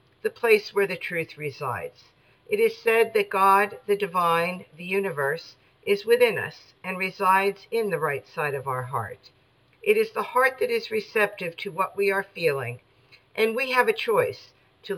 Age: 50-69